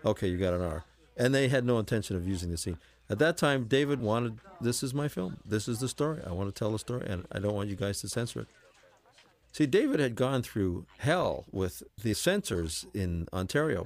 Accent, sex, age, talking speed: American, male, 50-69, 230 wpm